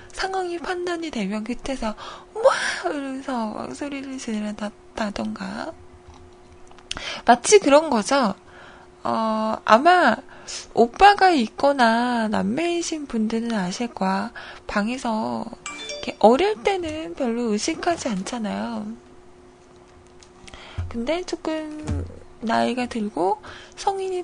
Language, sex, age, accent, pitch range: Korean, female, 20-39, native, 215-330 Hz